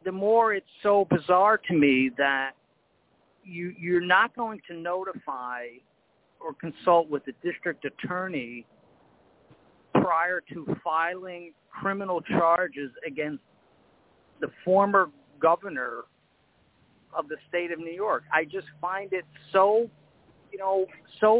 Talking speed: 120 wpm